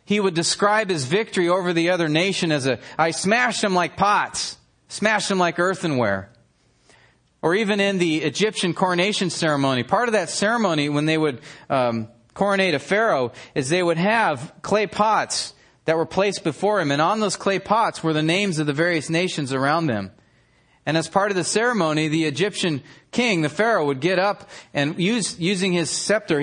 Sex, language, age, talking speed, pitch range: male, English, 30-49, 185 wpm, 145-185 Hz